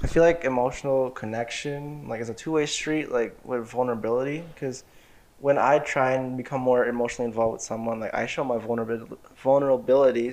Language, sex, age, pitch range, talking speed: English, male, 20-39, 120-145 Hz, 180 wpm